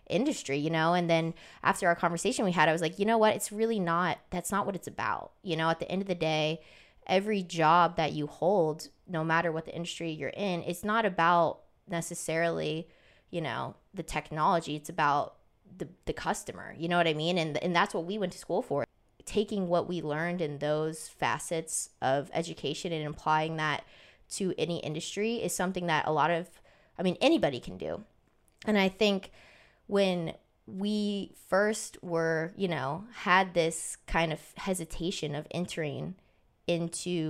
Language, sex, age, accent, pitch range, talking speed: English, female, 20-39, American, 160-190 Hz, 185 wpm